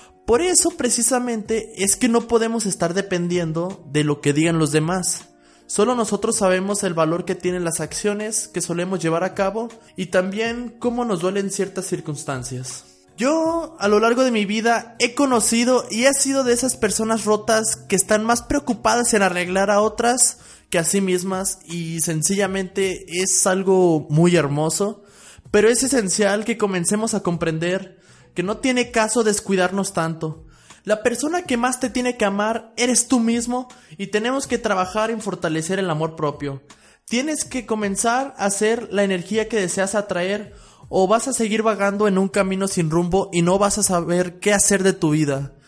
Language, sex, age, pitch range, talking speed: Spanish, male, 20-39, 180-230 Hz, 175 wpm